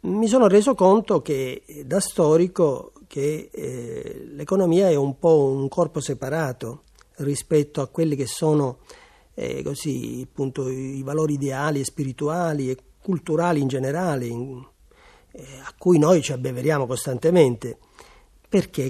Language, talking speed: Italian, 135 wpm